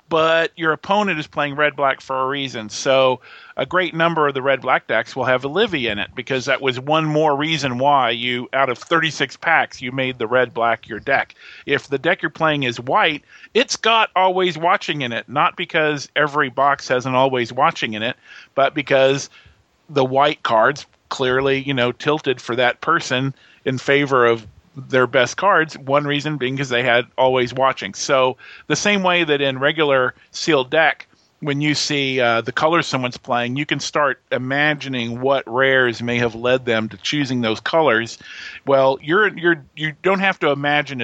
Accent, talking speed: American, 185 wpm